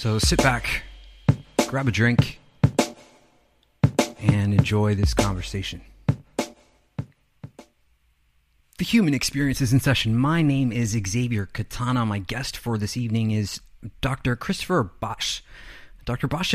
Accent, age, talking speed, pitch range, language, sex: American, 30-49, 115 wpm, 110-140 Hz, English, male